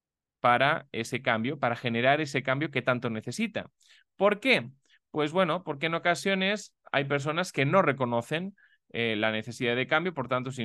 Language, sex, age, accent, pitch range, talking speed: Spanish, male, 30-49, Spanish, 115-155 Hz, 170 wpm